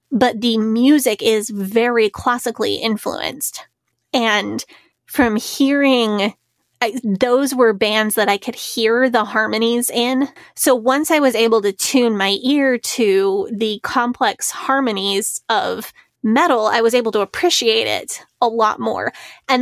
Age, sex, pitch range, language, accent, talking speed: 20-39, female, 215-255 Hz, English, American, 140 wpm